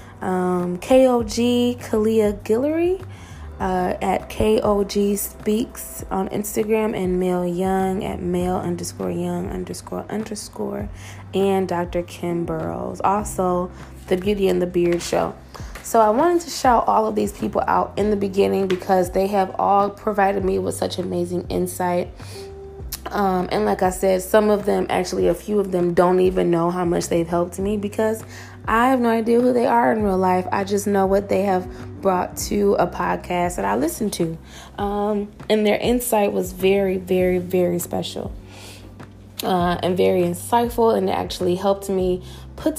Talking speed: 165 wpm